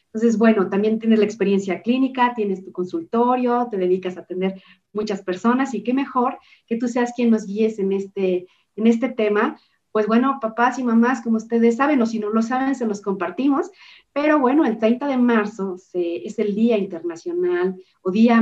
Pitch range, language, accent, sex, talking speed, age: 190-240 Hz, Spanish, Mexican, female, 190 wpm, 40-59